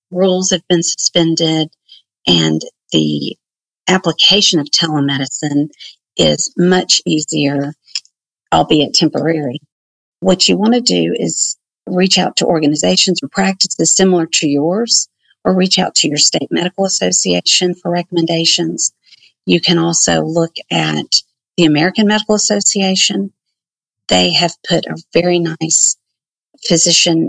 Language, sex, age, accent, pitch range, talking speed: English, female, 50-69, American, 145-180 Hz, 120 wpm